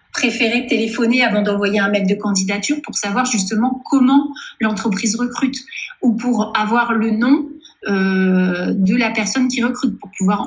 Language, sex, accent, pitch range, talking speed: French, female, French, 200-250 Hz, 155 wpm